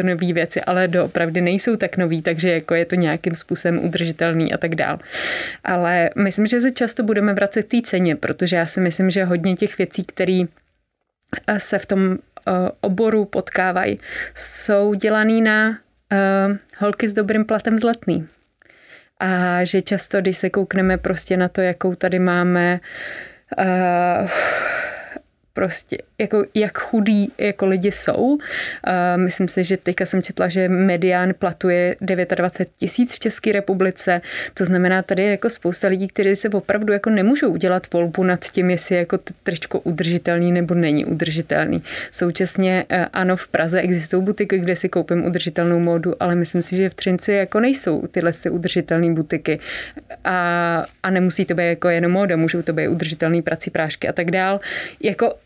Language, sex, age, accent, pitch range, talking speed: Czech, female, 30-49, native, 175-200 Hz, 155 wpm